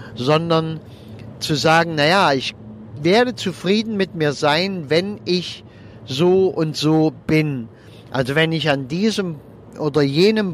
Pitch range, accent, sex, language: 130-165 Hz, German, male, German